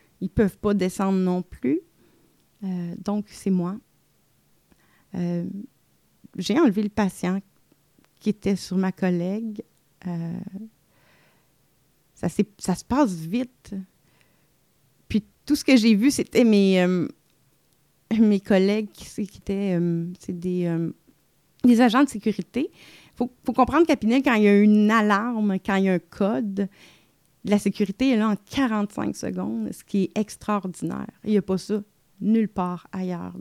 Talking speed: 155 wpm